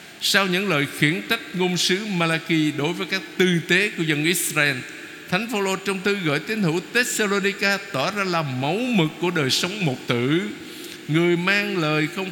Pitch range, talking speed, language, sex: 140-180 Hz, 185 wpm, Vietnamese, male